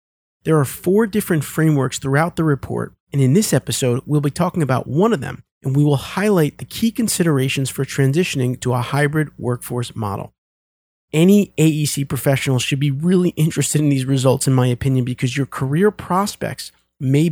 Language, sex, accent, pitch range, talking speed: English, male, American, 125-160 Hz, 175 wpm